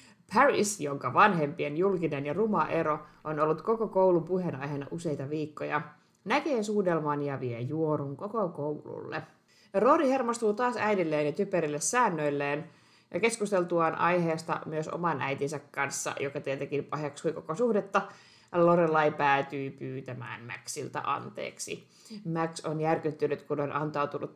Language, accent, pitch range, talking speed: Finnish, native, 150-195 Hz, 125 wpm